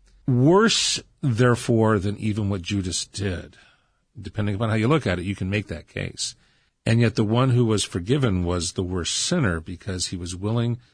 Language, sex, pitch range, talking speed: English, male, 95-120 Hz, 185 wpm